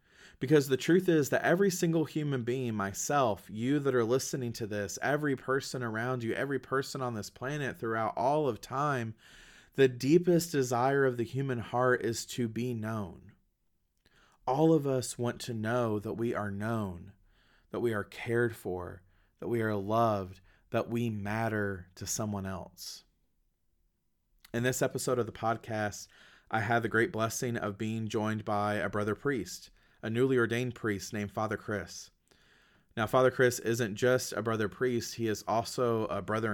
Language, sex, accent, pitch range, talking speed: English, male, American, 100-125 Hz, 170 wpm